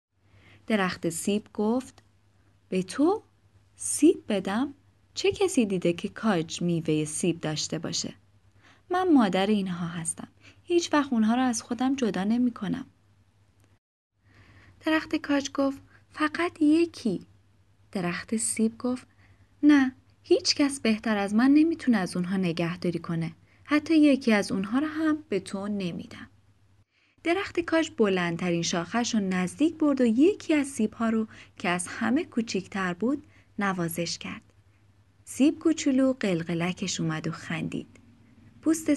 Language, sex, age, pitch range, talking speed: Persian, female, 20-39, 170-270 Hz, 125 wpm